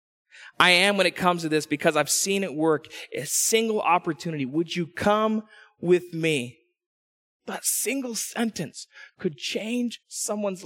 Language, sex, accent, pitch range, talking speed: English, male, American, 170-225 Hz, 145 wpm